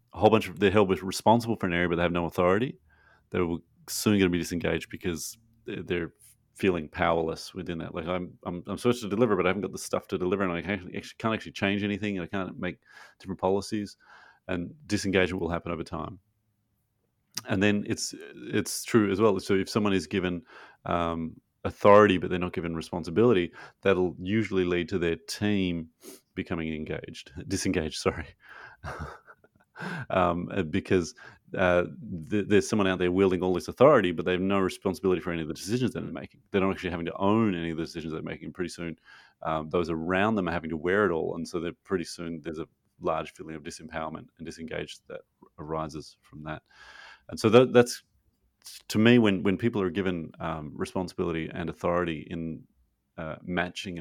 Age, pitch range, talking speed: 30-49, 85-100 Hz, 190 wpm